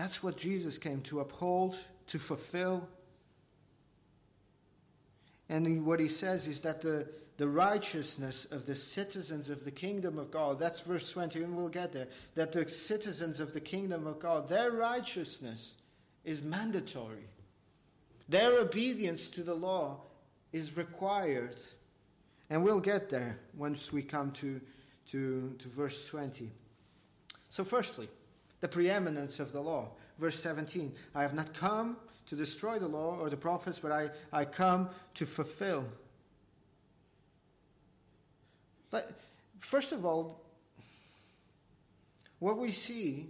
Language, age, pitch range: English, 50-69, 145-185 Hz